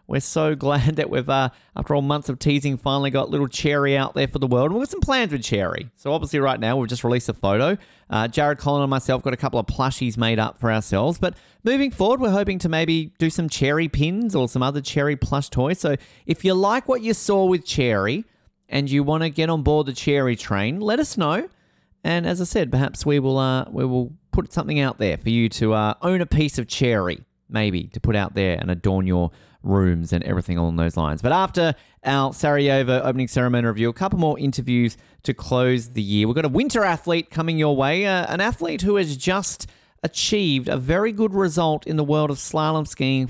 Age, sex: 30-49, male